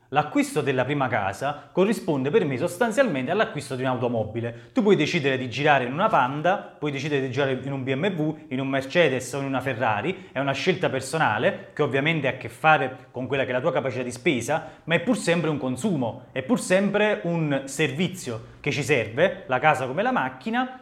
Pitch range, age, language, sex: 130-175 Hz, 30-49, Italian, male